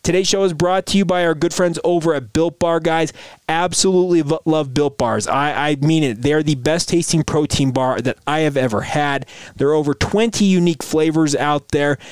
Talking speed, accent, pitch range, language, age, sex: 210 wpm, American, 135-170 Hz, English, 30-49, male